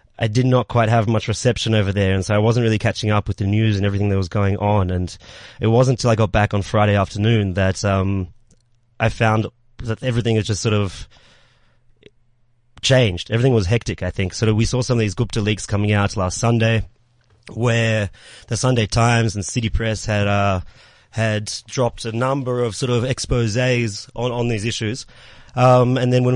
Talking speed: 205 wpm